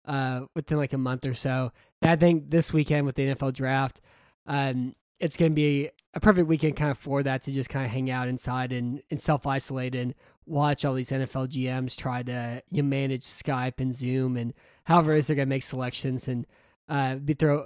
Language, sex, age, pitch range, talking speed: English, male, 20-39, 130-155 Hz, 220 wpm